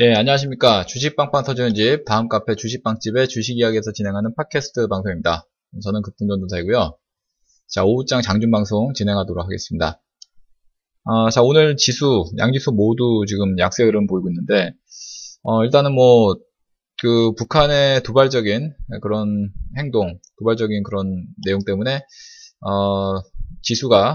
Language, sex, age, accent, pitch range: Korean, male, 20-39, native, 100-140 Hz